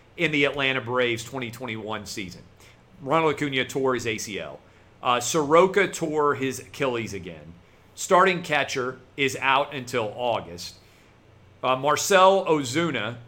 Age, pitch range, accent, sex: 40-59, 110-140 Hz, American, male